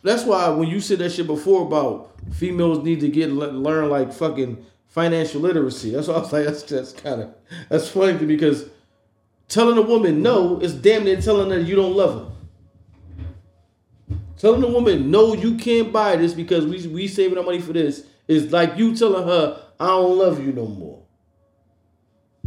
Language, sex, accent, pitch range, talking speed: English, male, American, 145-205 Hz, 190 wpm